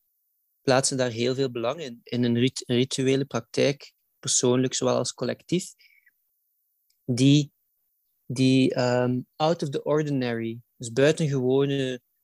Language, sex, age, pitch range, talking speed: Dutch, male, 20-39, 120-140 Hz, 110 wpm